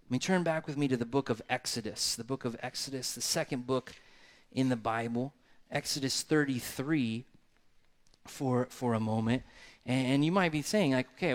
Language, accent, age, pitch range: English, American, 30-49, 120-150 Hz